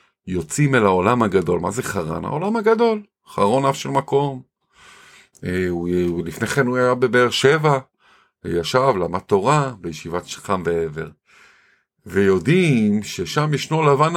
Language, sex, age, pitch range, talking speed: Hebrew, male, 50-69, 100-160 Hz, 130 wpm